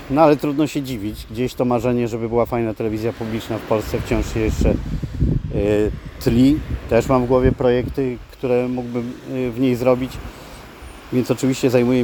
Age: 40-59